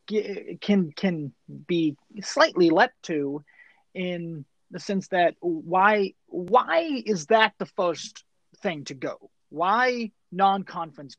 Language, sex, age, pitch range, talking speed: English, male, 30-49, 155-205 Hz, 115 wpm